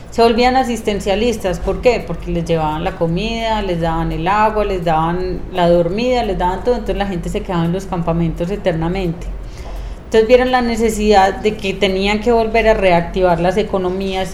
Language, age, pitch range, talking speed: Spanish, 30-49, 180-210 Hz, 180 wpm